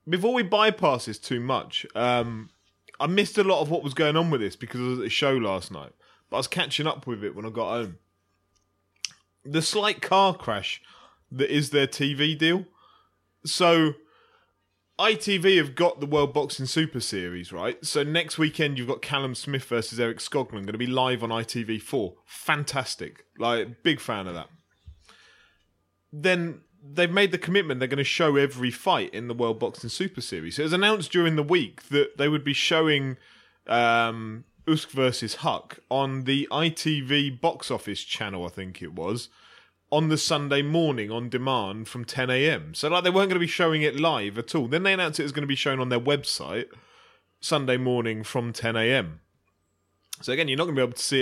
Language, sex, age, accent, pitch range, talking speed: English, male, 20-39, British, 115-160 Hz, 195 wpm